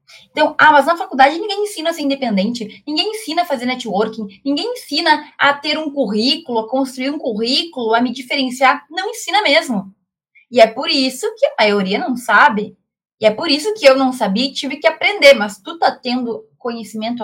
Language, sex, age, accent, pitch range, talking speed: Portuguese, female, 20-39, Brazilian, 210-280 Hz, 195 wpm